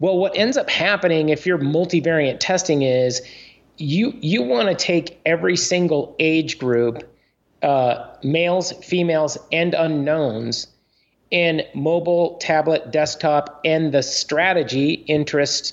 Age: 30-49